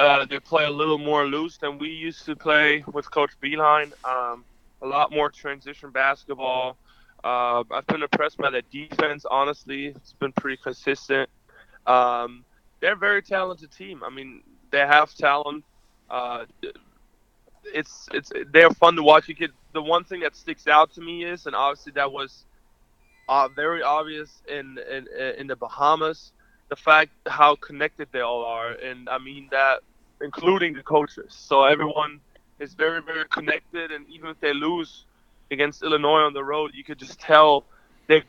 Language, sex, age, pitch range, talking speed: English, male, 20-39, 140-155 Hz, 170 wpm